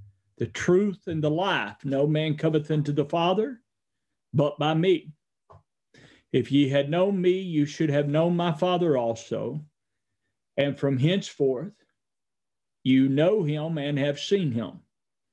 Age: 50-69